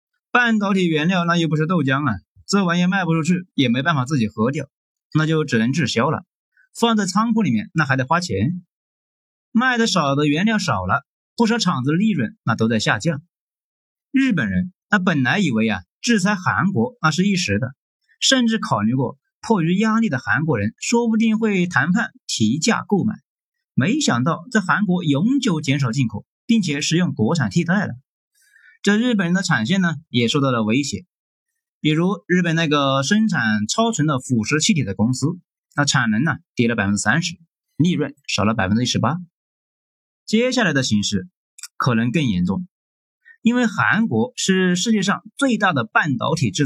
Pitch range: 140-215 Hz